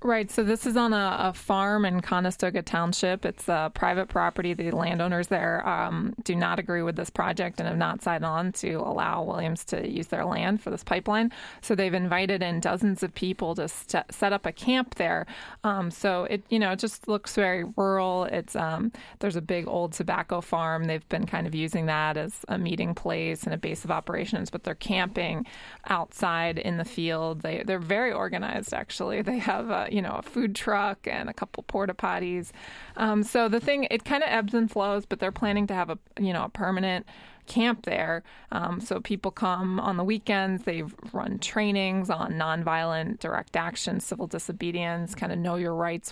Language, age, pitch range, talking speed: English, 20-39, 175-215 Hz, 205 wpm